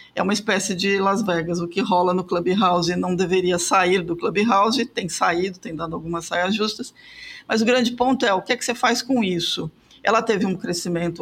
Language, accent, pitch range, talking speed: Portuguese, Brazilian, 185-225 Hz, 215 wpm